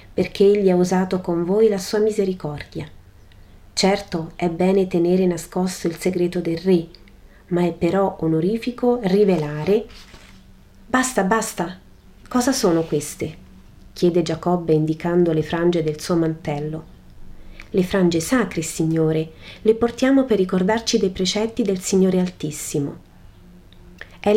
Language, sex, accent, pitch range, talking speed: Italian, female, native, 155-195 Hz, 125 wpm